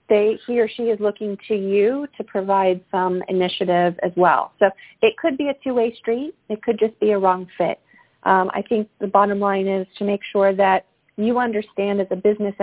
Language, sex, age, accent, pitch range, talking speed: English, female, 40-59, American, 195-230 Hz, 210 wpm